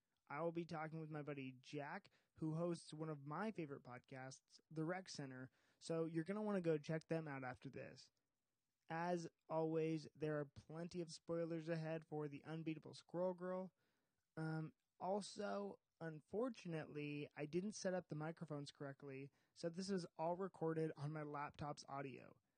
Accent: American